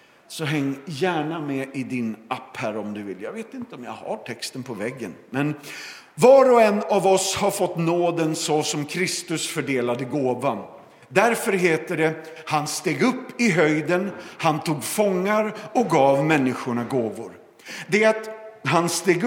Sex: male